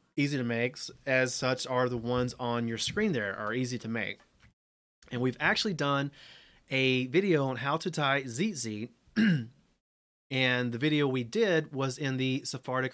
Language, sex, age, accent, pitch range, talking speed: English, male, 30-49, American, 125-180 Hz, 165 wpm